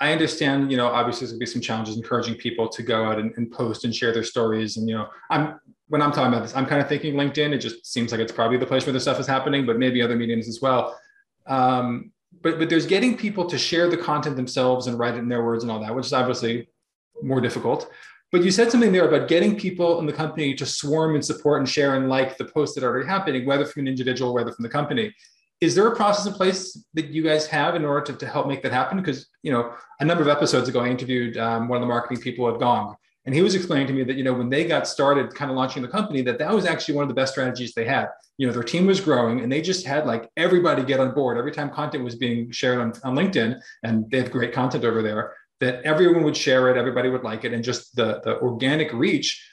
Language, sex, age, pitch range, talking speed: English, male, 20-39, 120-150 Hz, 270 wpm